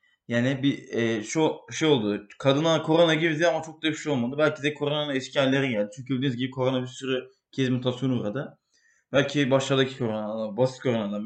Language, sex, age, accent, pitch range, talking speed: English, male, 20-39, Turkish, 125-155 Hz, 185 wpm